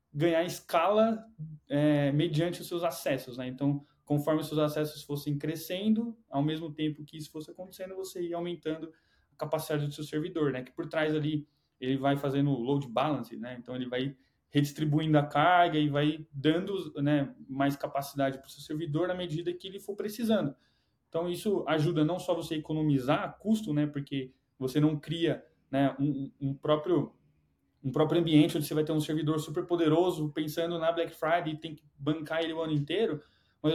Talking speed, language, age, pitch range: 185 wpm, Portuguese, 20-39, 145-175 Hz